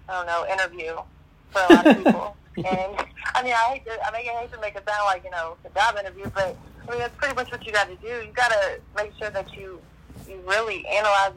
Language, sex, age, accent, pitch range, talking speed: English, female, 30-49, American, 165-195 Hz, 245 wpm